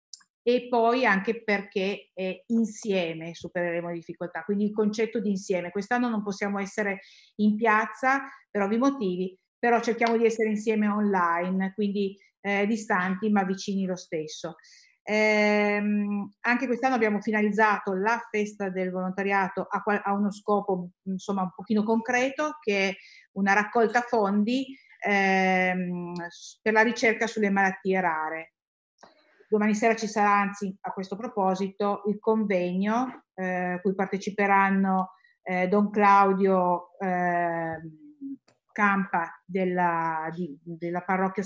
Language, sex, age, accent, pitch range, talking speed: Italian, female, 50-69, native, 185-220 Hz, 125 wpm